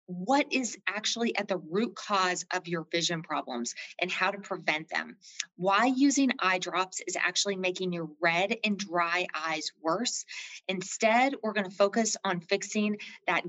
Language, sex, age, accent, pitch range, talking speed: English, female, 30-49, American, 175-215 Hz, 165 wpm